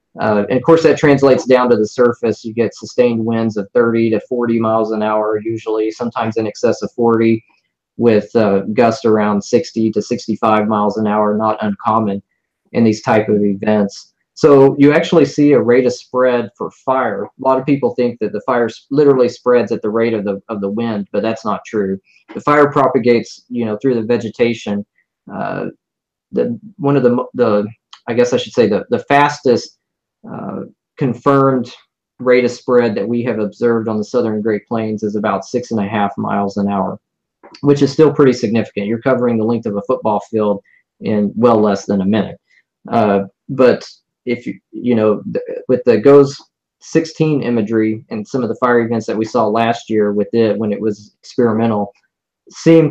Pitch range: 105-125 Hz